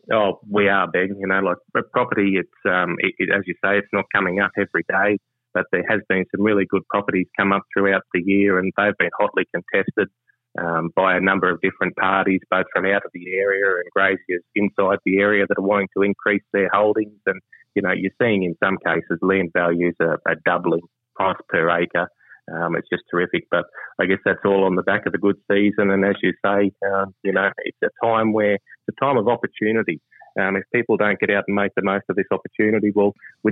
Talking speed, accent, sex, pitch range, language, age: 225 wpm, Australian, male, 95-105 Hz, English, 30-49